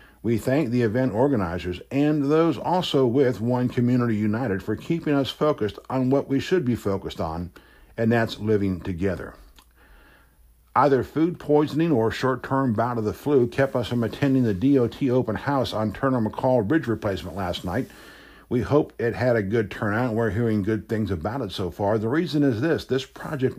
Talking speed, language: 180 wpm, English